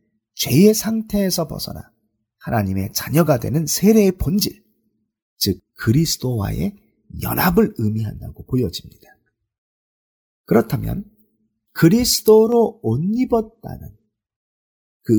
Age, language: 40-59, Korean